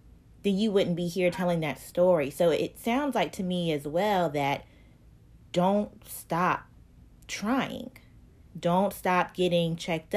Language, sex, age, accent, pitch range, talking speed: English, female, 20-39, American, 155-190 Hz, 140 wpm